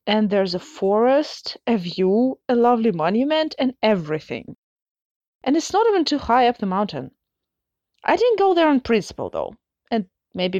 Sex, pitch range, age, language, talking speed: female, 185-285 Hz, 20-39, English, 165 wpm